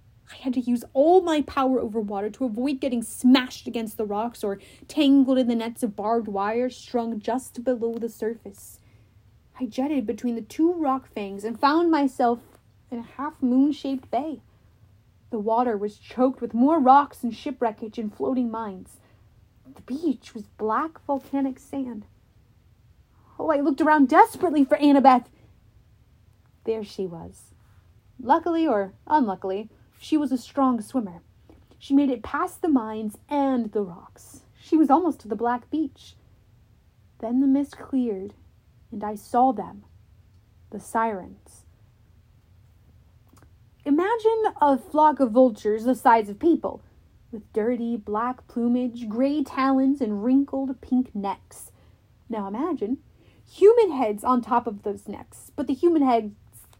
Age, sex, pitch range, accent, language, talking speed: 30-49, female, 195-270 Hz, American, English, 145 wpm